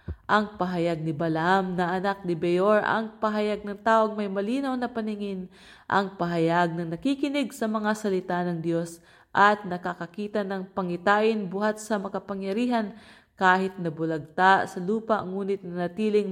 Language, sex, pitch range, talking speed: English, female, 175-215 Hz, 145 wpm